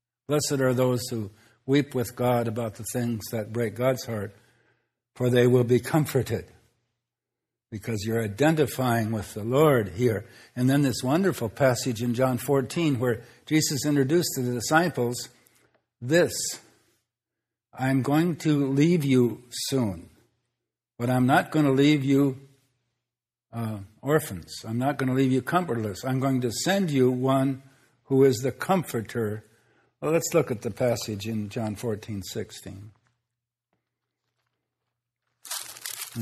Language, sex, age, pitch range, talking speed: English, male, 60-79, 120-135 Hz, 140 wpm